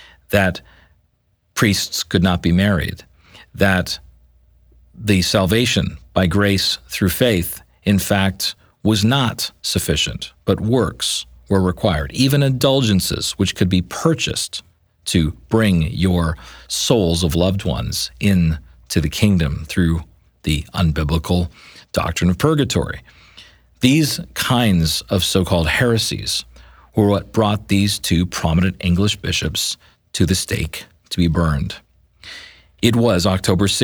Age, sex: 40-59, male